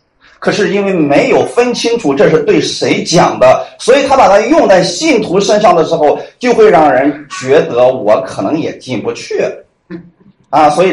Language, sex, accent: Chinese, male, native